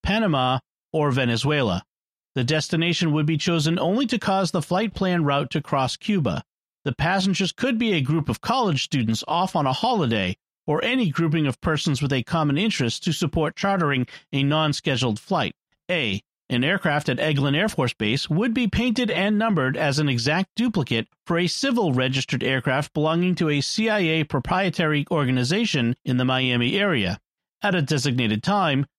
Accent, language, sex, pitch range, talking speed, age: American, English, male, 130-180 Hz, 170 wpm, 40-59